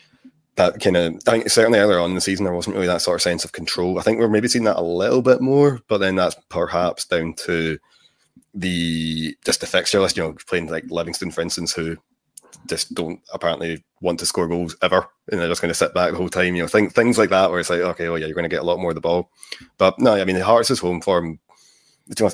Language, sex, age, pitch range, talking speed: English, male, 20-39, 85-95 Hz, 250 wpm